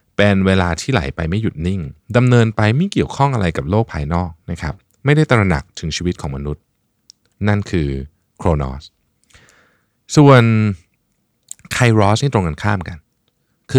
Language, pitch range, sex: Thai, 80-110 Hz, male